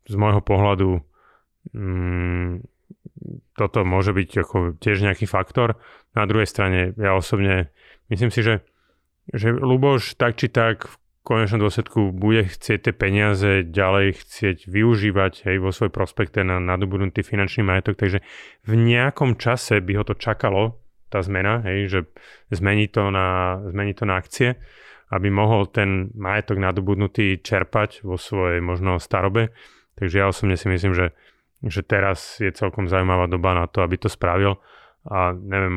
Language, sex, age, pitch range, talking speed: Slovak, male, 30-49, 95-105 Hz, 150 wpm